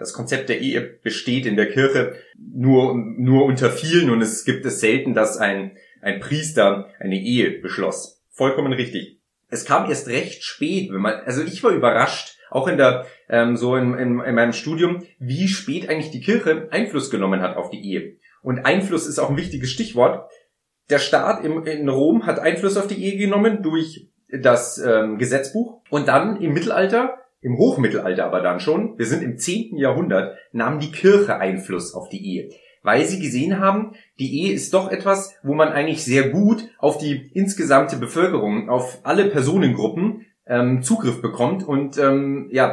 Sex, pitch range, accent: male, 125-190 Hz, German